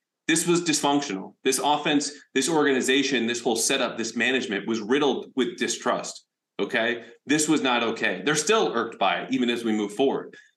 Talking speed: 175 wpm